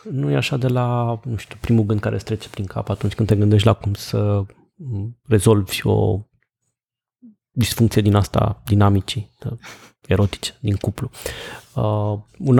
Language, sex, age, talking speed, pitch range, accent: Romanian, male, 20-39, 150 wpm, 105-135 Hz, native